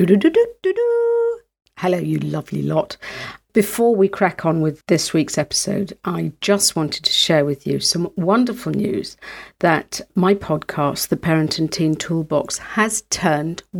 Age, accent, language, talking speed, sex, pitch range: 50-69, British, English, 140 wpm, female, 160-200 Hz